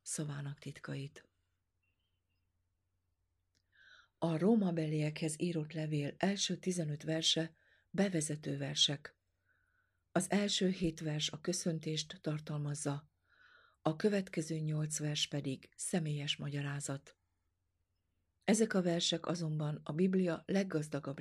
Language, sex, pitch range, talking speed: Hungarian, female, 140-170 Hz, 95 wpm